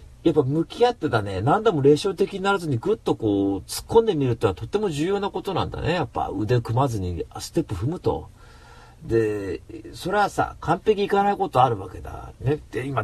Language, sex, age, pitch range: Japanese, male, 40-59, 100-150 Hz